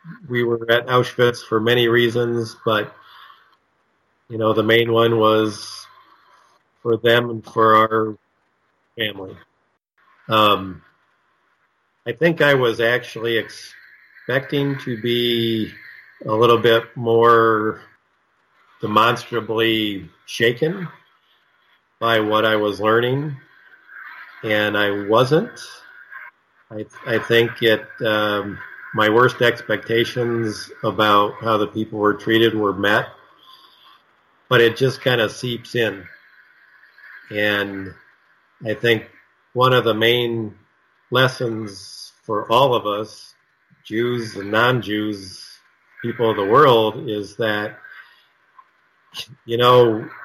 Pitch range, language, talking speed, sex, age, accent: 110-120 Hz, English, 105 wpm, male, 50-69, American